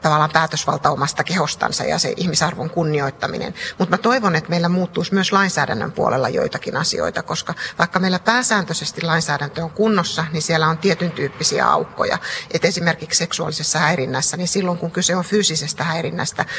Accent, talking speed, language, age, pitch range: native, 150 wpm, Finnish, 30-49, 155-180 Hz